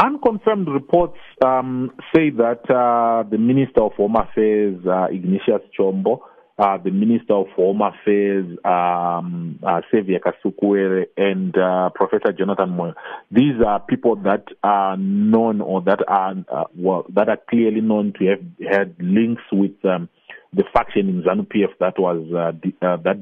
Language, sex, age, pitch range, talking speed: English, male, 40-59, 95-115 Hz, 160 wpm